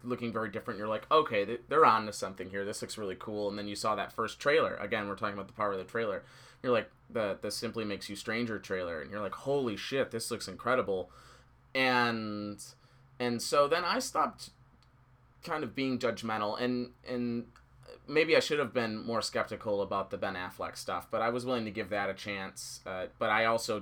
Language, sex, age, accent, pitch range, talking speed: English, male, 20-39, American, 105-125 Hz, 215 wpm